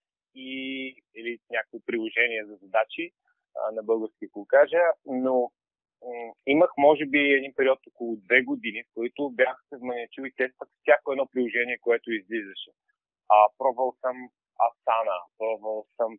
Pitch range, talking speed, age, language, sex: 120-160 Hz, 145 wpm, 30-49, Bulgarian, male